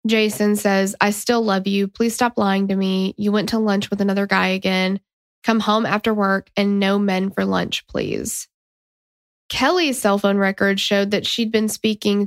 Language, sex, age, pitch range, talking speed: English, female, 10-29, 200-245 Hz, 185 wpm